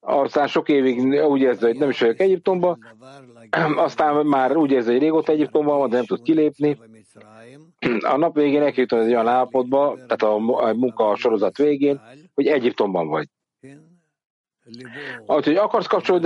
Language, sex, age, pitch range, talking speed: English, male, 60-79, 125-155 Hz, 150 wpm